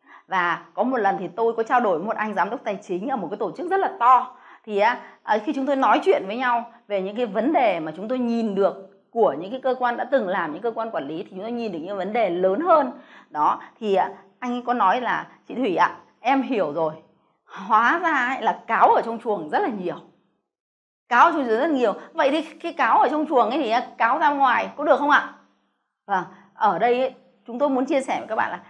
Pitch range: 210-275 Hz